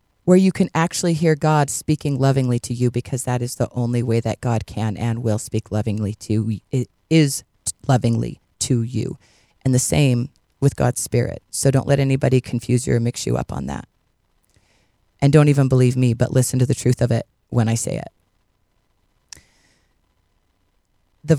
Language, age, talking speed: English, 40-59, 180 wpm